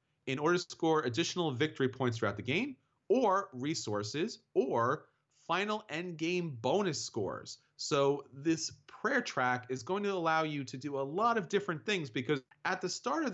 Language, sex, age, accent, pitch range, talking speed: English, male, 30-49, American, 125-165 Hz, 175 wpm